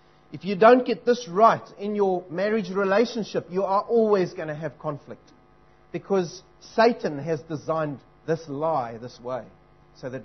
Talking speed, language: 160 wpm, English